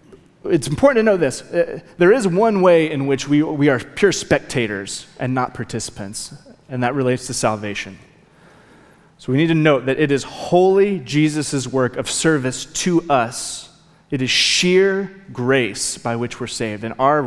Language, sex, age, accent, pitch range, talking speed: English, male, 30-49, American, 120-155 Hz, 170 wpm